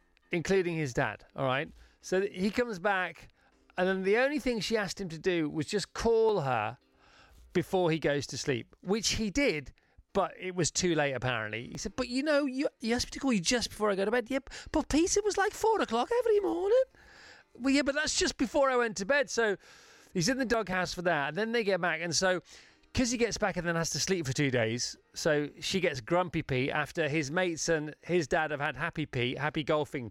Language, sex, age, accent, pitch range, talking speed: English, male, 30-49, British, 145-225 Hz, 235 wpm